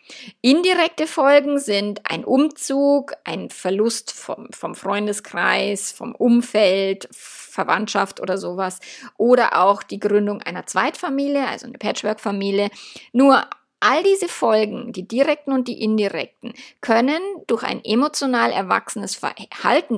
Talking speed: 115 wpm